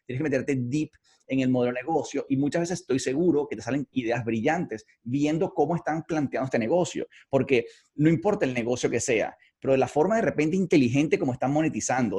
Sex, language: male, English